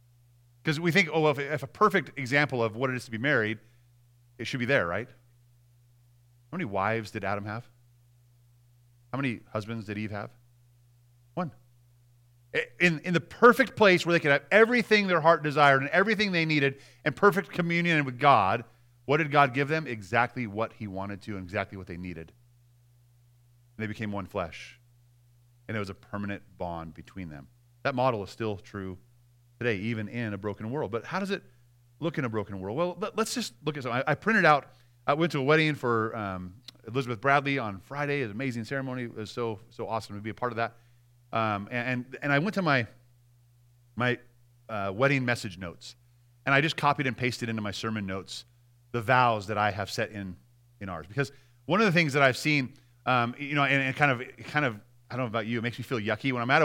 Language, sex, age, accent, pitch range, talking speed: English, male, 30-49, American, 115-140 Hz, 215 wpm